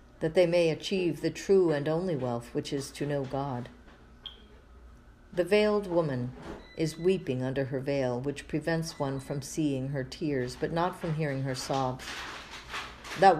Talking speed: 160 wpm